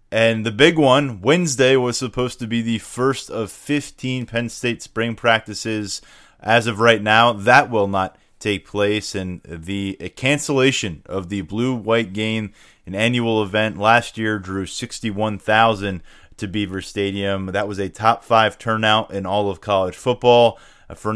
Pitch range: 100-120 Hz